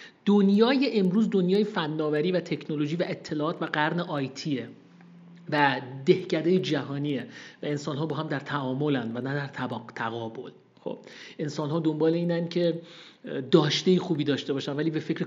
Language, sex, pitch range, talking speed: Persian, male, 150-185 Hz, 155 wpm